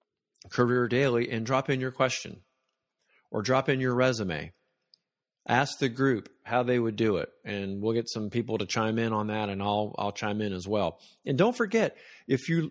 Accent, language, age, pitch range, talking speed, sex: American, English, 40-59, 110-145 Hz, 200 wpm, male